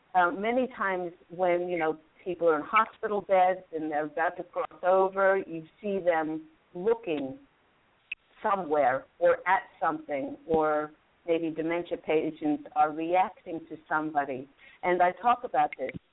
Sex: female